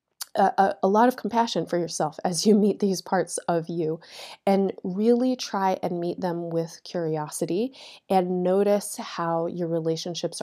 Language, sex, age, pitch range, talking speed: English, female, 30-49, 160-190 Hz, 160 wpm